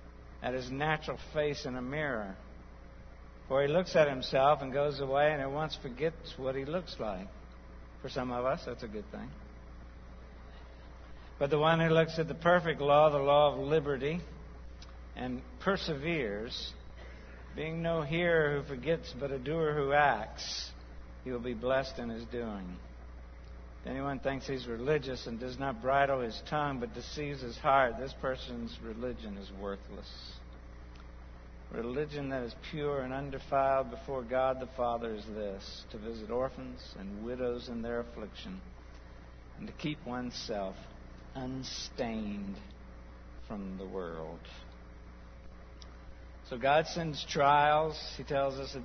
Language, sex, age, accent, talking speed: English, male, 60-79, American, 145 wpm